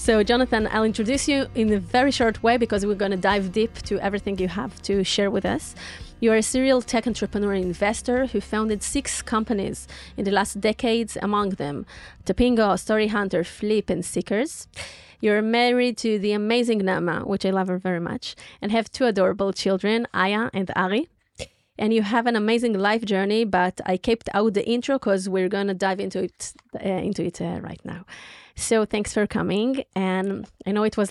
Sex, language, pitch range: female, Hebrew, 195-230 Hz